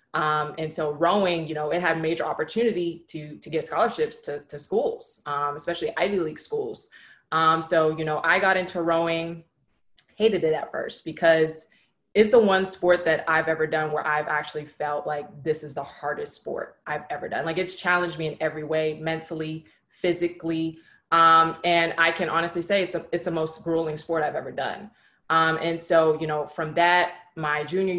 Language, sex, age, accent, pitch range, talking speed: English, female, 20-39, American, 155-175 Hz, 195 wpm